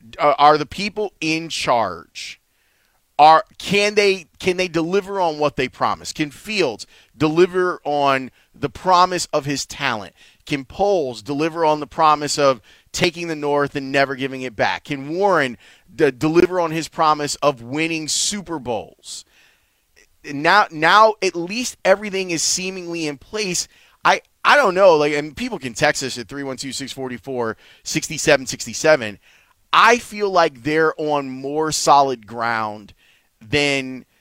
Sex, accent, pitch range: male, American, 135-175 Hz